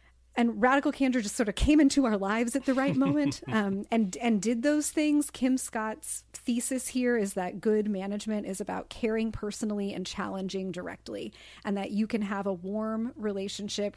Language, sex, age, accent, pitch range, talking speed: English, female, 30-49, American, 195-235 Hz, 185 wpm